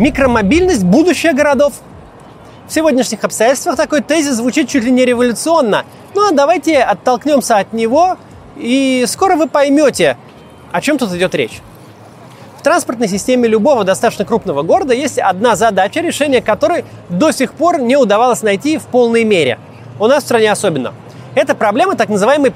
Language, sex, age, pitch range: Russian, male, 30-49, 215-295 Hz